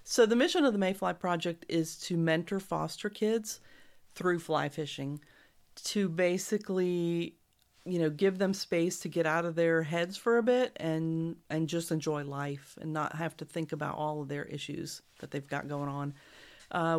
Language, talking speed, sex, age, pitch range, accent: English, 185 wpm, female, 40-59, 150-175 Hz, American